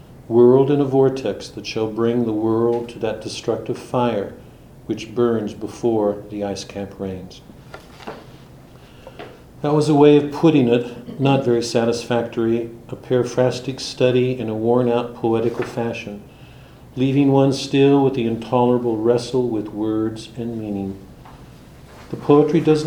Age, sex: 50-69, male